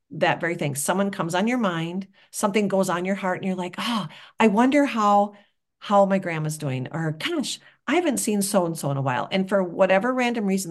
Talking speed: 215 wpm